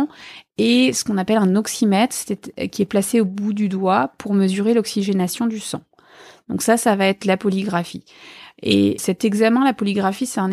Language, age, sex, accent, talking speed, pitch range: French, 30-49, female, French, 180 wpm, 190-225 Hz